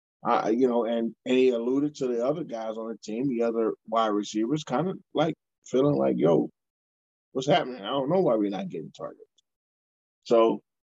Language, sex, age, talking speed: English, male, 20-39, 190 wpm